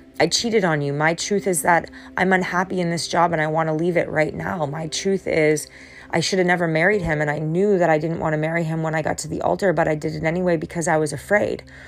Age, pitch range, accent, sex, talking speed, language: 30-49, 155-185 Hz, American, female, 280 wpm, English